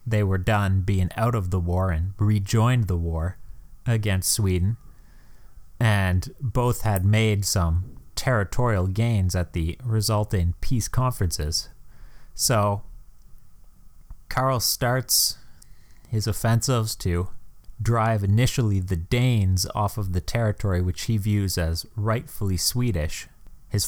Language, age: English, 30-49